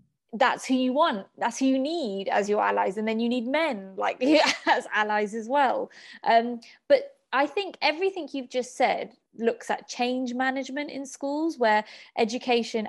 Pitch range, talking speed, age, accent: 205-265 Hz, 170 wpm, 20-39, British